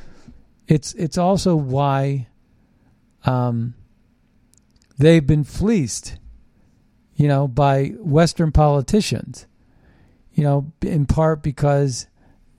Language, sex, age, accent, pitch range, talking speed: English, male, 50-69, American, 130-170 Hz, 85 wpm